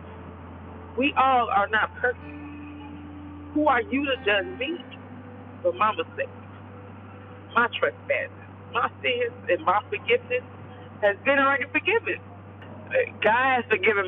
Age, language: 50-69, English